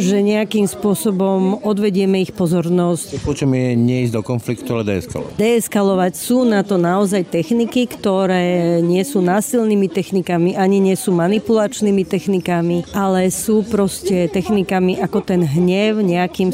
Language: Slovak